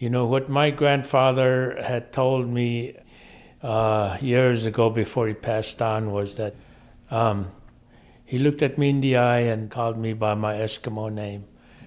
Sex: male